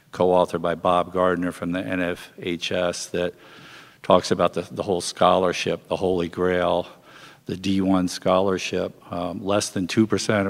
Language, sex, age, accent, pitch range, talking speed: English, male, 50-69, American, 85-95 Hz, 135 wpm